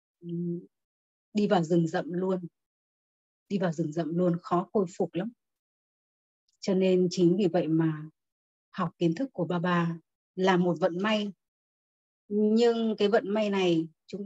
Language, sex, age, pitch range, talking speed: Vietnamese, female, 20-39, 165-205 Hz, 155 wpm